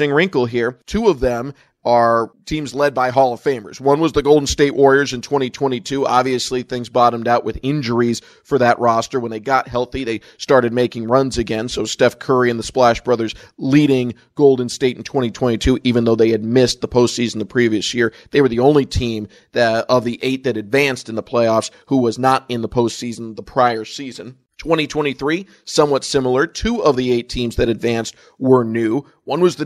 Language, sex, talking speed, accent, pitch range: English, male, 200 wpm, American, 120-135 Hz